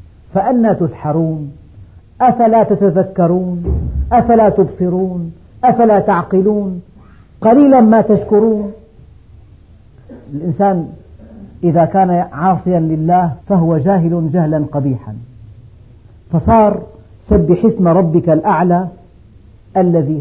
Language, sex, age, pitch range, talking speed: Arabic, female, 50-69, 135-200 Hz, 75 wpm